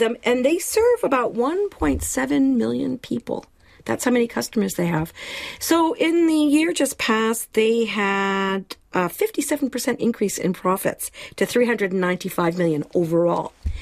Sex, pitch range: female, 175-235 Hz